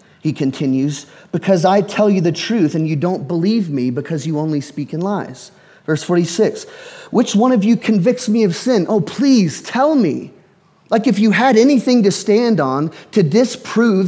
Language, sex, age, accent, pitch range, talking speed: English, male, 30-49, American, 145-215 Hz, 185 wpm